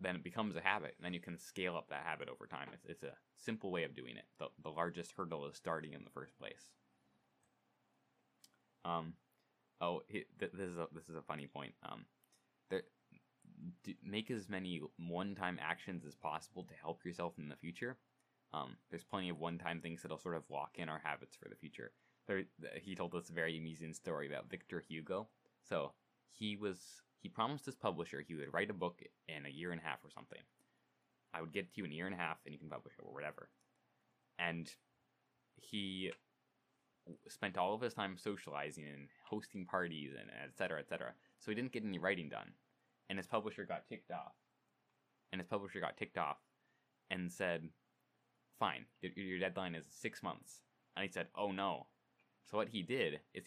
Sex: male